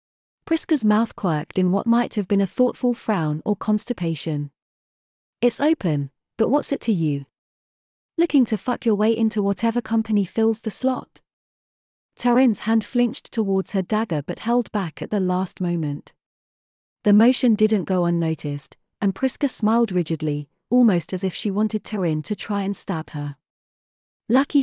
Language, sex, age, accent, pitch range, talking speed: English, female, 40-59, British, 170-230 Hz, 160 wpm